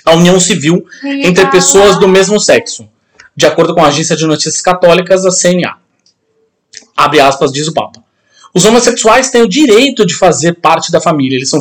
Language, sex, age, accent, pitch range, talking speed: Portuguese, male, 20-39, Brazilian, 160-205 Hz, 180 wpm